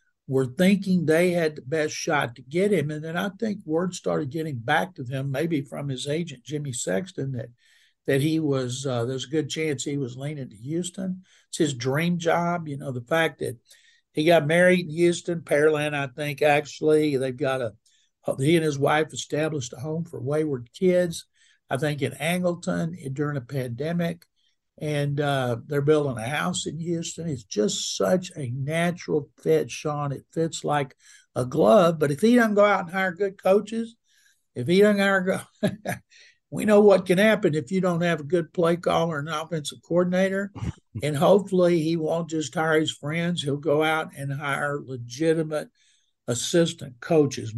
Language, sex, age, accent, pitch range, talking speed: English, male, 60-79, American, 140-175 Hz, 180 wpm